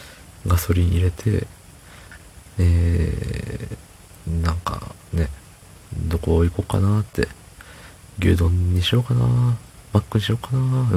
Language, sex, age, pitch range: Japanese, male, 40-59, 85-105 Hz